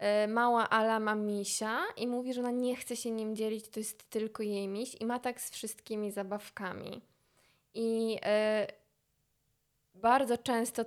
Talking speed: 150 wpm